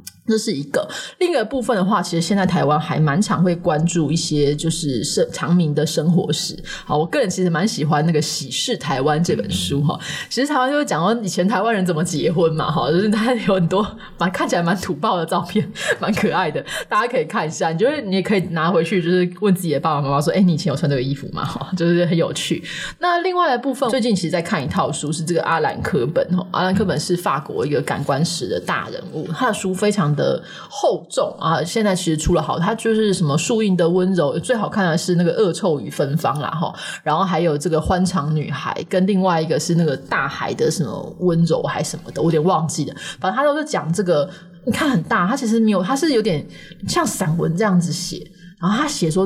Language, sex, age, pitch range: Chinese, female, 20-39, 160-205 Hz